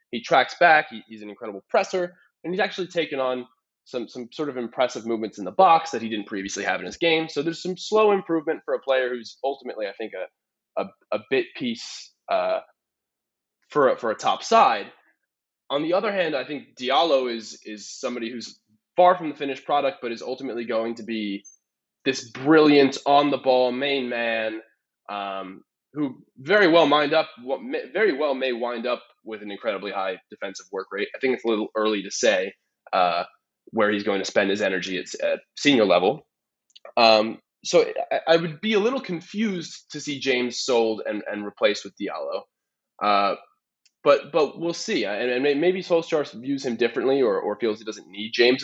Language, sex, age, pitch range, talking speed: English, male, 20-39, 110-170 Hz, 190 wpm